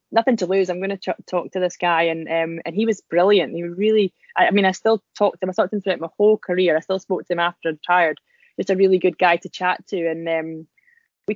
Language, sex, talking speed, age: English, female, 285 wpm, 20-39